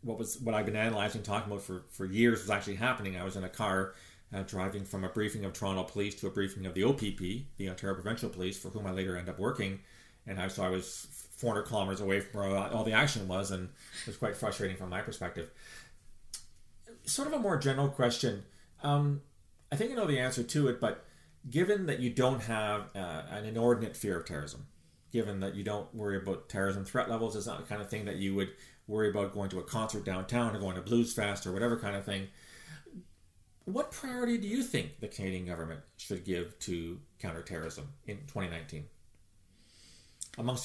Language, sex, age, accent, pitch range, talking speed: English, male, 30-49, American, 95-120 Hz, 215 wpm